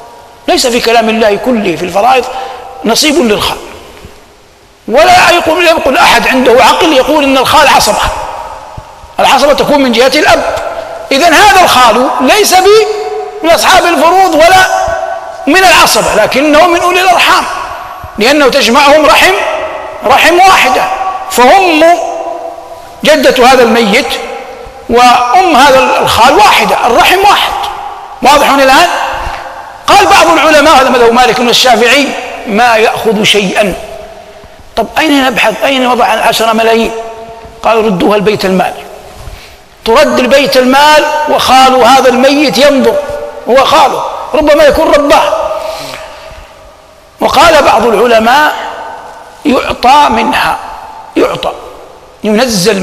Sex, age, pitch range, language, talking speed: male, 50-69, 240-335 Hz, Arabic, 105 wpm